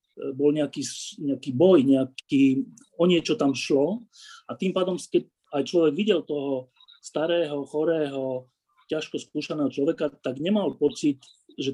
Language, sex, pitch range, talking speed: Slovak, male, 135-170 Hz, 135 wpm